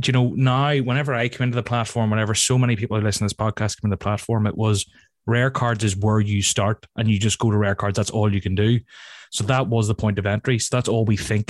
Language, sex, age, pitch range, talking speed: English, male, 20-39, 110-135 Hz, 275 wpm